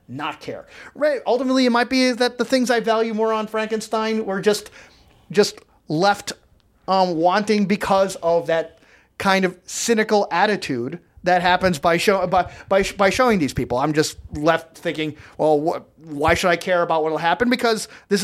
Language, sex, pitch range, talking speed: English, male, 160-220 Hz, 180 wpm